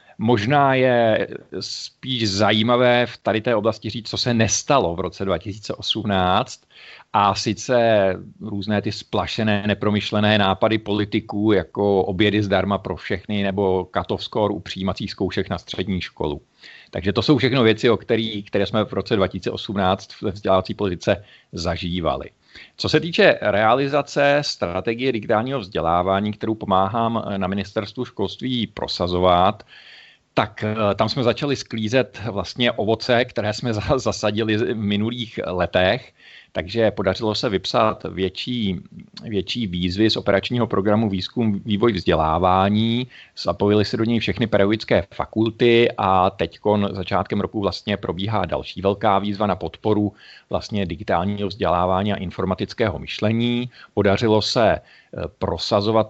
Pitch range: 95-115 Hz